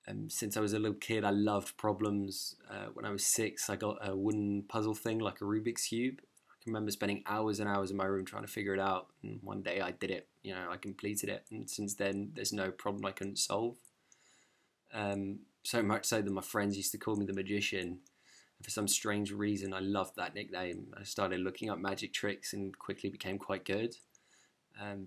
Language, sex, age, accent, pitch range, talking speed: English, male, 20-39, British, 100-110 Hz, 225 wpm